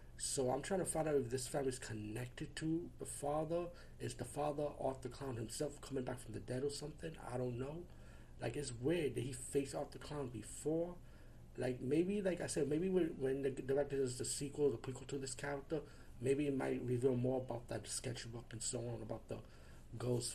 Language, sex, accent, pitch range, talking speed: English, male, American, 115-145 Hz, 210 wpm